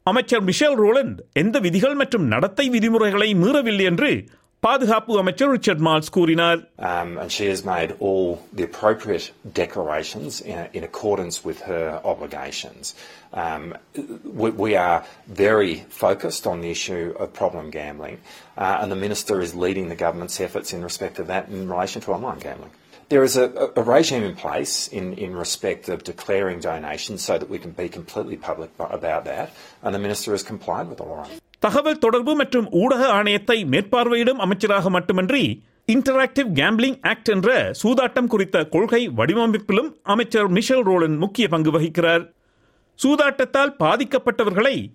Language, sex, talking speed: Tamil, male, 145 wpm